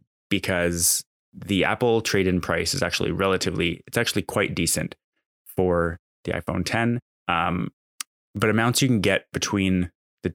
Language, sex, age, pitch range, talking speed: English, male, 20-39, 90-115 Hz, 140 wpm